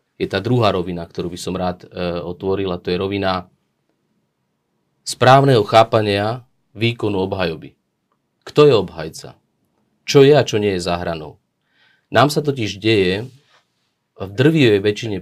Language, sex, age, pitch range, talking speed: Slovak, male, 30-49, 95-120 Hz, 140 wpm